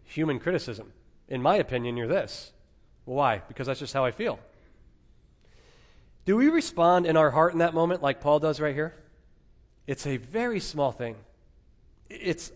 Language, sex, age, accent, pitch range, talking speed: English, male, 40-59, American, 125-165 Hz, 160 wpm